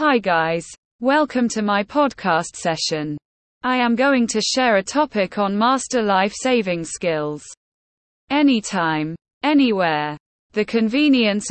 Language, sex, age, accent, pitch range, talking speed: English, female, 20-39, British, 180-250 Hz, 120 wpm